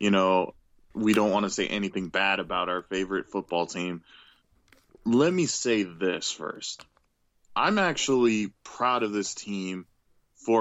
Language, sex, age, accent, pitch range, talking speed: English, male, 20-39, American, 100-125 Hz, 145 wpm